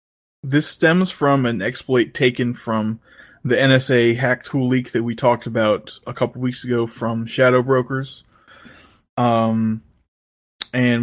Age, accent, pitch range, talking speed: 20-39, American, 115-135 Hz, 140 wpm